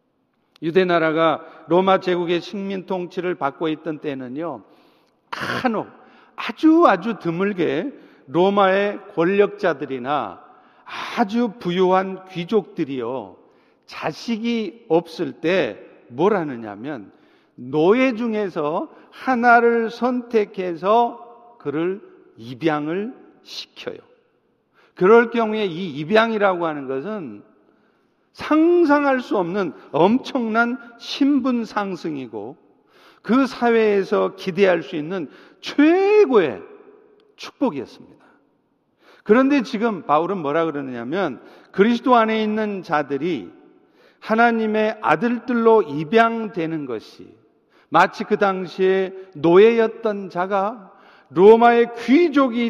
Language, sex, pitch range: Korean, male, 175-240 Hz